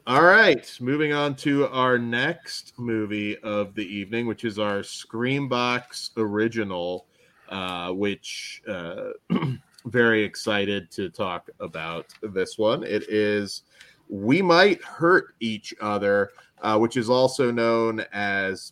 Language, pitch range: English, 105-135 Hz